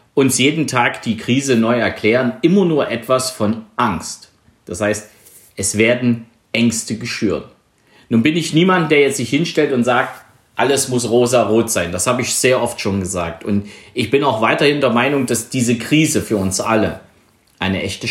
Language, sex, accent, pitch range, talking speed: German, male, German, 110-135 Hz, 180 wpm